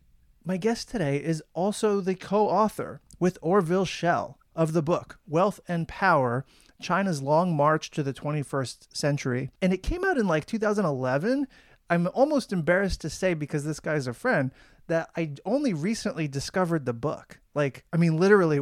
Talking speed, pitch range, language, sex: 165 wpm, 140-190 Hz, English, male